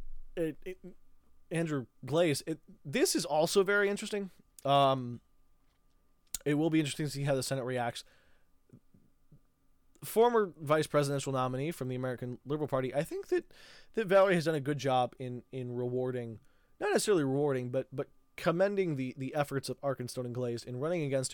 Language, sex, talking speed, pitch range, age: English, male, 165 wpm, 130-165 Hz, 20-39